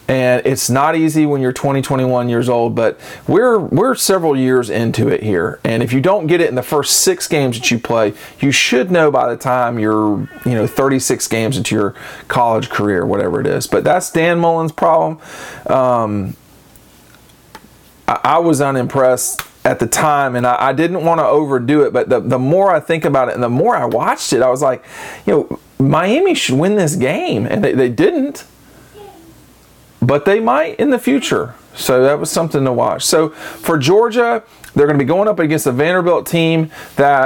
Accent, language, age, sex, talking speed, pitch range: American, English, 40-59, male, 200 wpm, 125-170 Hz